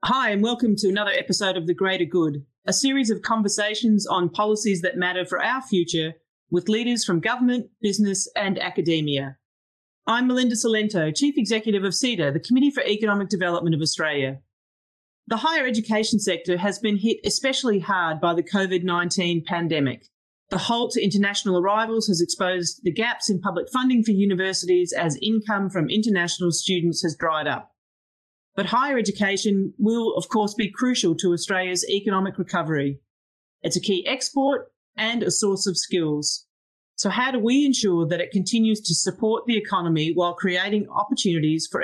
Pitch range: 175-220 Hz